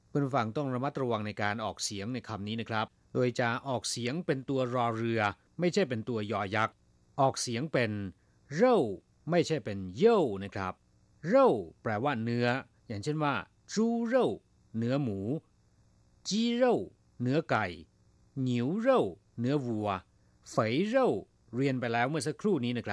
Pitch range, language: 105-150 Hz, Thai